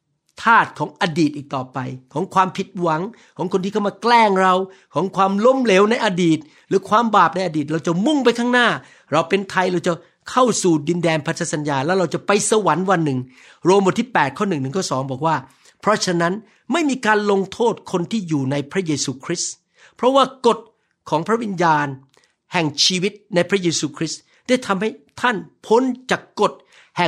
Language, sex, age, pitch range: Thai, male, 60-79, 155-200 Hz